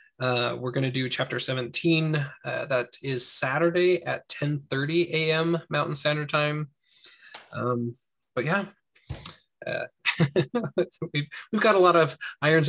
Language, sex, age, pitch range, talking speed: English, male, 20-39, 125-155 Hz, 130 wpm